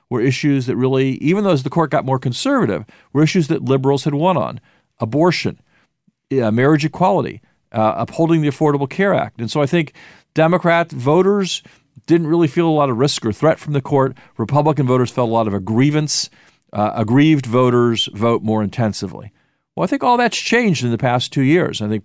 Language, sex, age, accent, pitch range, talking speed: English, male, 50-69, American, 115-155 Hz, 195 wpm